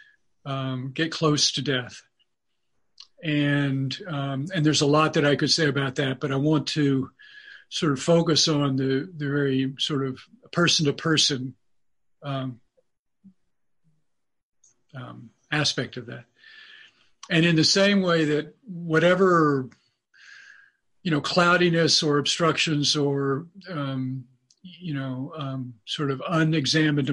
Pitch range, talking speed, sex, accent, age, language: 135-165 Hz, 120 wpm, male, American, 50-69, English